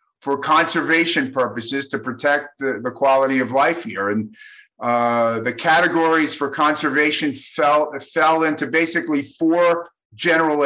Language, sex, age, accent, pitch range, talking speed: English, male, 50-69, American, 130-165 Hz, 130 wpm